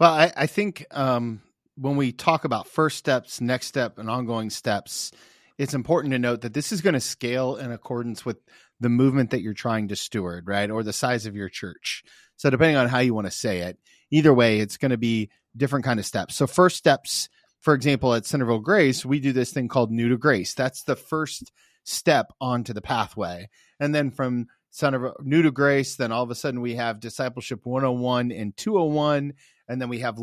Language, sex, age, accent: English, male, 30-49, American